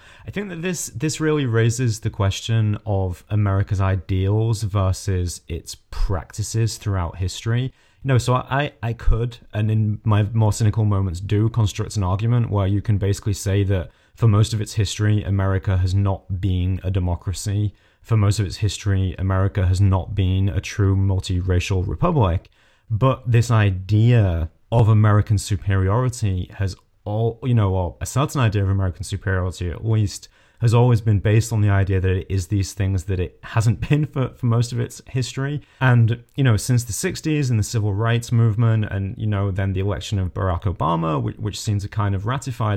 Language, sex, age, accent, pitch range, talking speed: English, male, 30-49, British, 95-115 Hz, 185 wpm